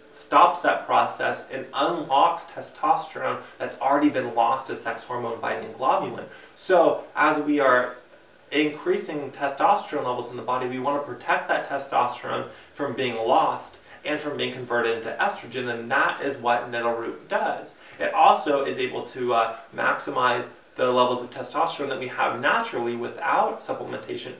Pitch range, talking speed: 120-145 Hz, 155 wpm